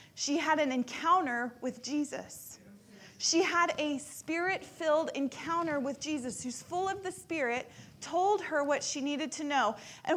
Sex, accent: female, American